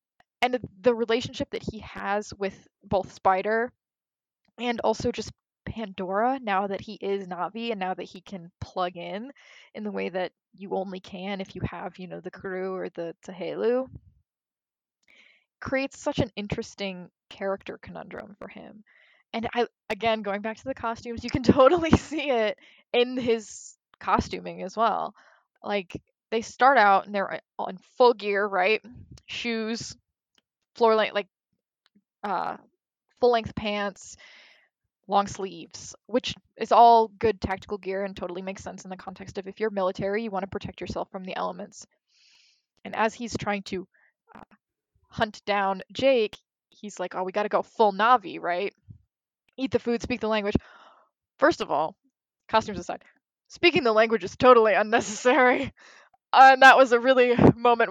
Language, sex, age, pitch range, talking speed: English, female, 10-29, 195-240 Hz, 160 wpm